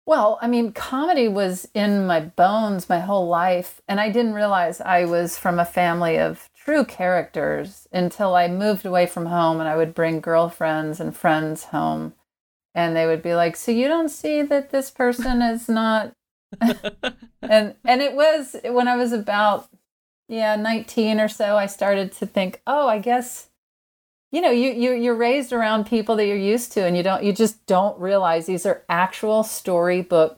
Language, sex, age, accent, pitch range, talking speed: English, female, 40-59, American, 170-230 Hz, 185 wpm